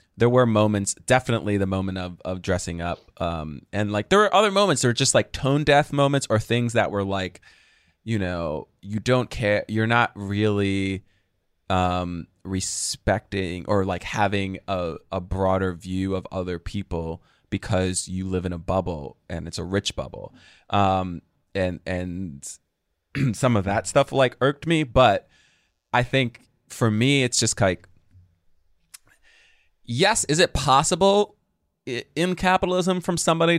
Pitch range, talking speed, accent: 95-120 Hz, 155 wpm, American